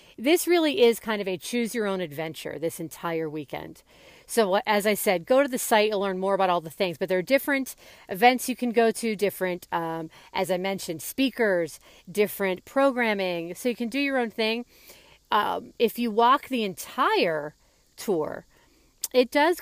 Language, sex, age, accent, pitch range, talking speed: English, female, 40-59, American, 180-240 Hz, 175 wpm